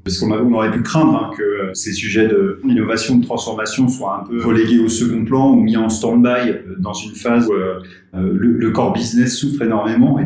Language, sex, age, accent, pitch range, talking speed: French, male, 30-49, French, 105-135 Hz, 215 wpm